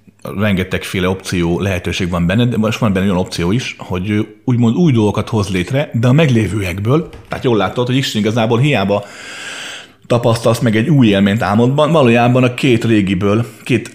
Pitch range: 95-120 Hz